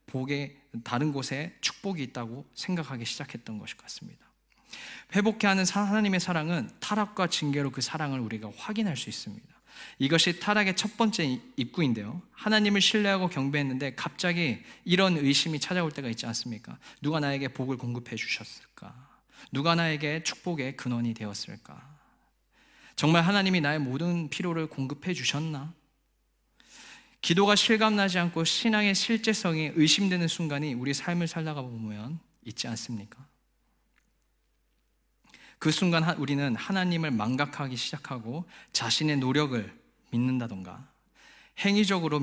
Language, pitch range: Korean, 130-180 Hz